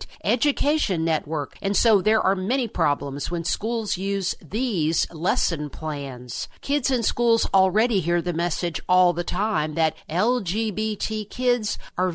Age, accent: 50-69, American